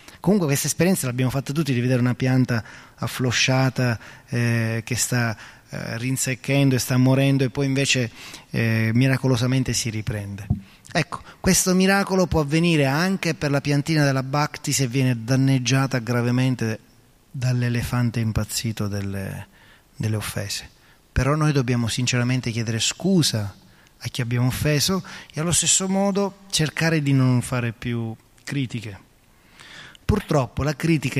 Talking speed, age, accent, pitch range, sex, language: 135 wpm, 20-39, native, 115-140 Hz, male, Italian